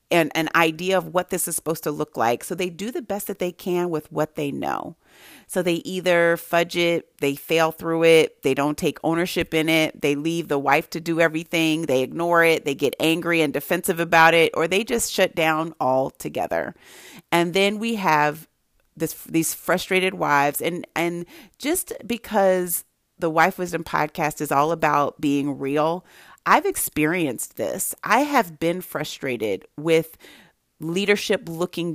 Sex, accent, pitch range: female, American, 155-180 Hz